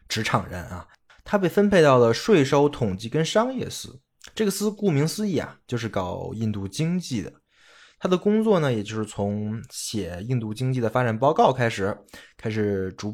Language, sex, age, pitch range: Chinese, male, 20-39, 105-150 Hz